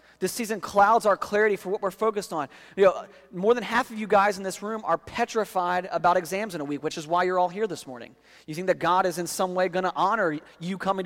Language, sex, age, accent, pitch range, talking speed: English, male, 30-49, American, 165-210 Hz, 265 wpm